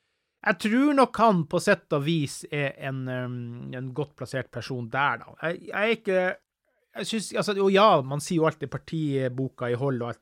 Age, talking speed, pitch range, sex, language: 30-49, 165 wpm, 125-165 Hz, male, English